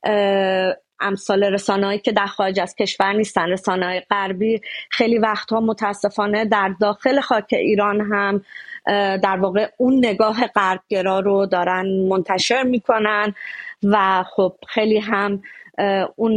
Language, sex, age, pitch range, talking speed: Persian, female, 30-49, 200-245 Hz, 115 wpm